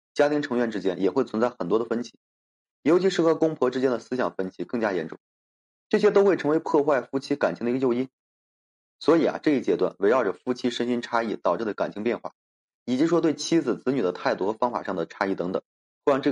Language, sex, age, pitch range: Chinese, male, 20-39, 115-150 Hz